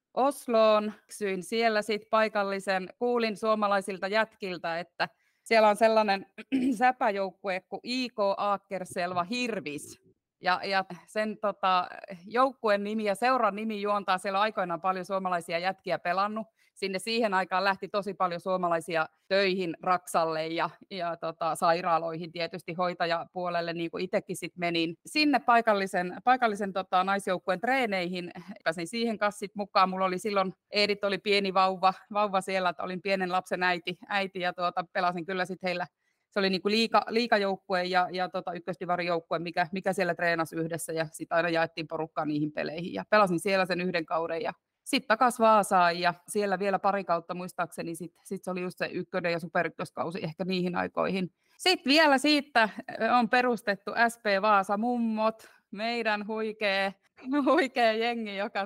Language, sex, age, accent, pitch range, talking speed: Finnish, female, 30-49, native, 180-215 Hz, 150 wpm